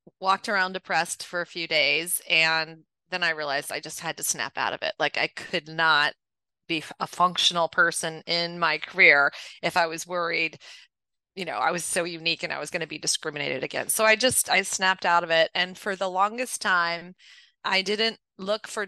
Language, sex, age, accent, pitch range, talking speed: English, female, 30-49, American, 160-195 Hz, 205 wpm